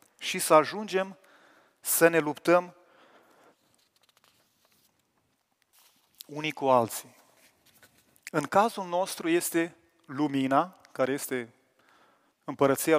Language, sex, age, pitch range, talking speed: Romanian, male, 30-49, 145-200 Hz, 80 wpm